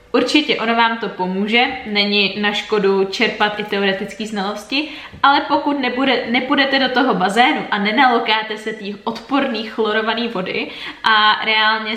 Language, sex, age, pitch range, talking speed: Czech, female, 20-39, 205-245 Hz, 140 wpm